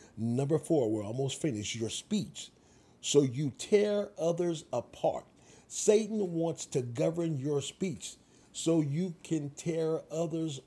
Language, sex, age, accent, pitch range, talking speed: English, male, 40-59, American, 115-160 Hz, 130 wpm